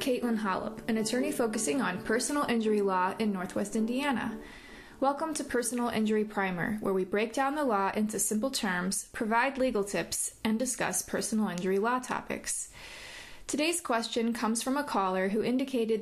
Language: English